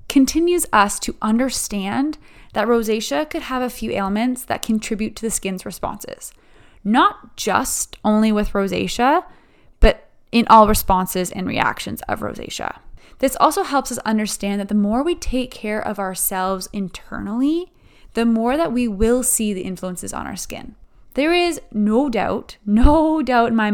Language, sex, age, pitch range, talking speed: English, female, 20-39, 200-250 Hz, 160 wpm